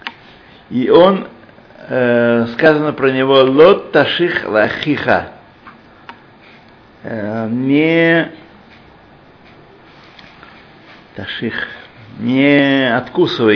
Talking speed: 60 wpm